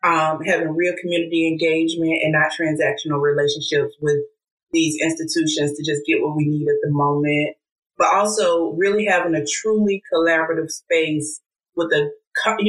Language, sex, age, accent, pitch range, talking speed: English, female, 30-49, American, 155-200 Hz, 150 wpm